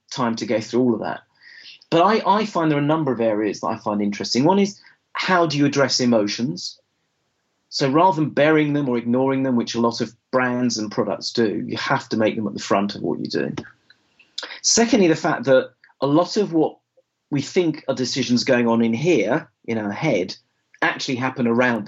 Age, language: 40-59, English